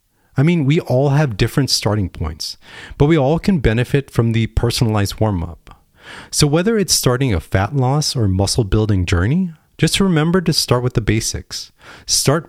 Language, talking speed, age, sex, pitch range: English, 170 wpm, 30-49, male, 95-140 Hz